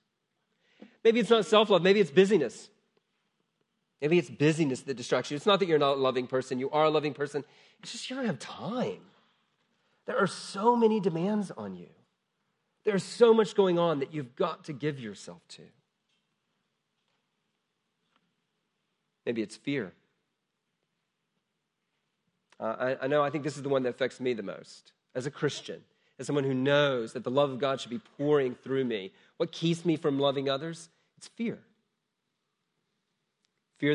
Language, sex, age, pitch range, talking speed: English, male, 40-59, 140-195 Hz, 170 wpm